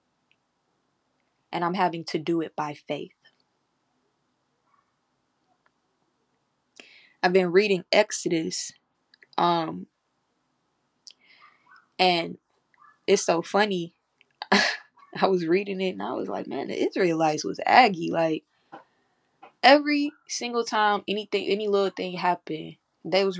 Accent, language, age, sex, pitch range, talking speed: American, English, 20-39, female, 170-200 Hz, 105 wpm